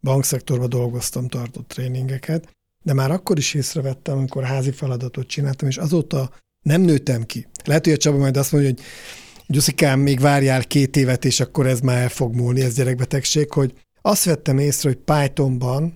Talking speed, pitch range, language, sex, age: 175 wpm, 130-150 Hz, Hungarian, male, 50-69